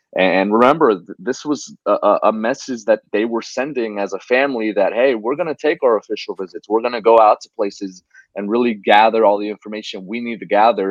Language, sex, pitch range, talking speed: English, male, 100-120 Hz, 220 wpm